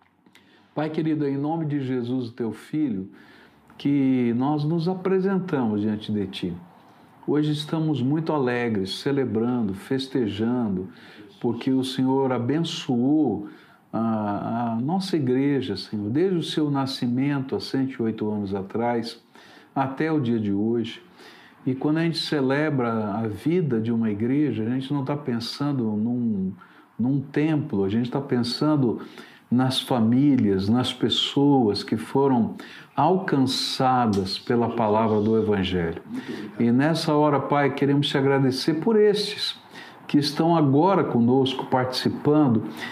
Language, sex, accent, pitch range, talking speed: Portuguese, male, Brazilian, 115-150 Hz, 125 wpm